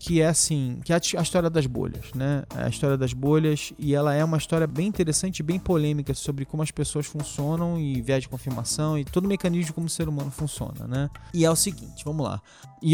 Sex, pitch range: male, 140-175 Hz